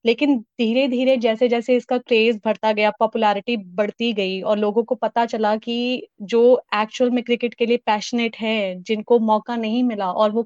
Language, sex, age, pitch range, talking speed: Urdu, female, 20-39, 220-255 Hz, 195 wpm